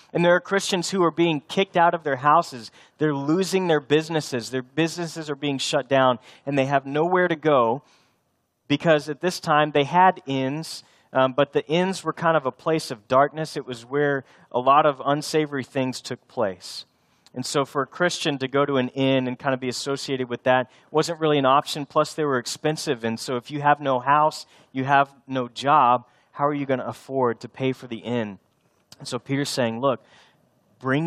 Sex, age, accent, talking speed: male, 30-49, American, 210 wpm